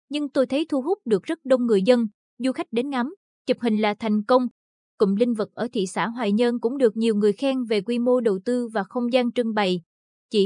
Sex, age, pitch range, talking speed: female, 20-39, 205-255 Hz, 245 wpm